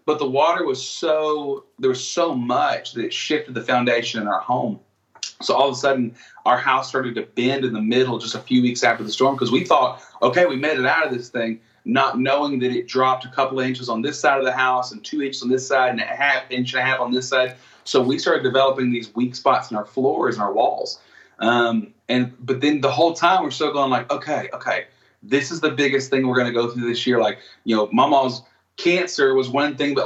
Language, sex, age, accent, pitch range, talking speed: English, male, 30-49, American, 120-135 Hz, 250 wpm